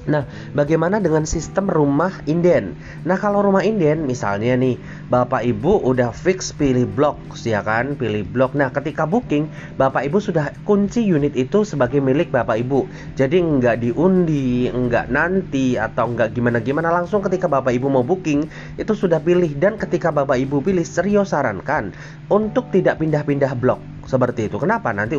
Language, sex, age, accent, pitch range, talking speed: Indonesian, male, 30-49, native, 125-170 Hz, 160 wpm